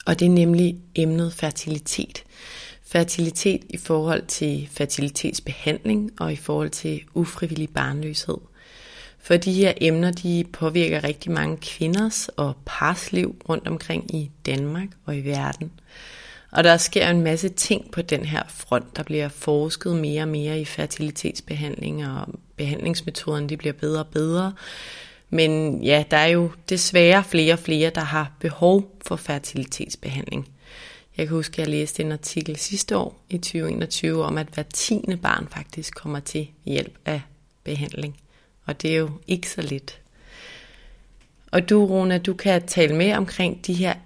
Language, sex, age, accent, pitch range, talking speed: Danish, female, 30-49, native, 150-175 Hz, 155 wpm